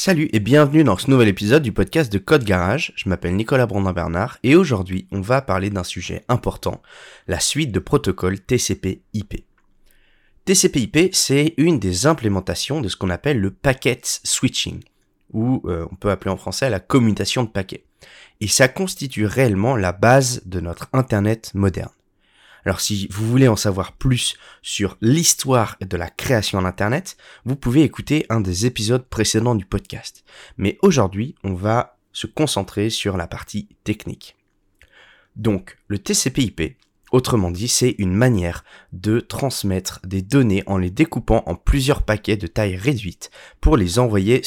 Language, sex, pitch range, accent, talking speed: French, male, 95-130 Hz, French, 160 wpm